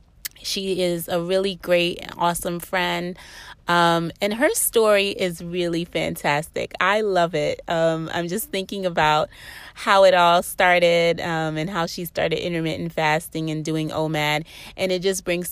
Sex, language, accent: female, English, American